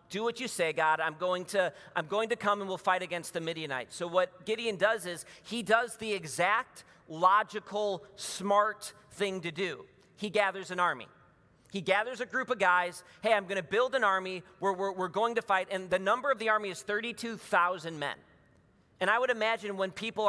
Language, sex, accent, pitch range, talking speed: English, male, American, 150-210 Hz, 205 wpm